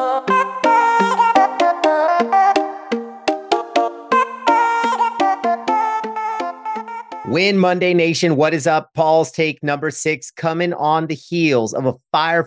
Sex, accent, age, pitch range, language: male, American, 40-59, 125-170 Hz, English